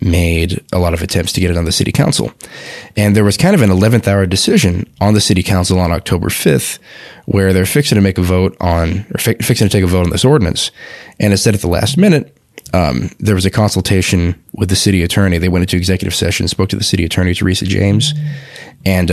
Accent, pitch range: American, 90-105 Hz